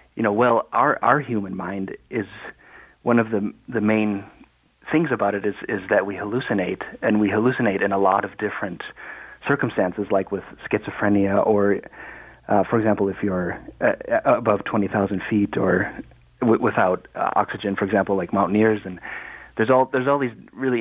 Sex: male